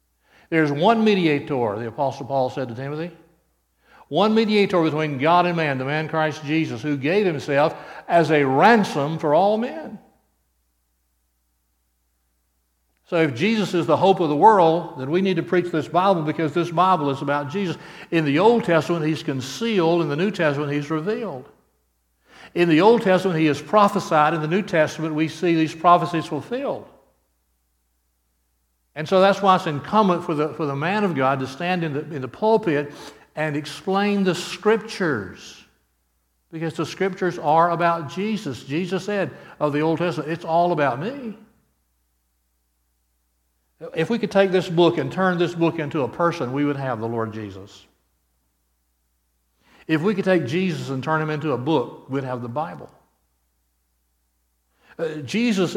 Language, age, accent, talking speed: English, 60-79, American, 165 wpm